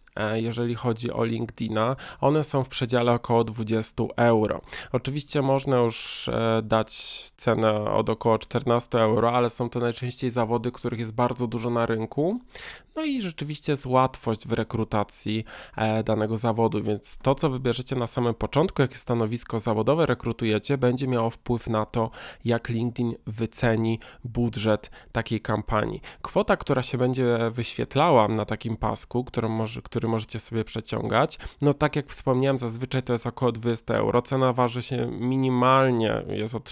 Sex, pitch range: male, 115-130 Hz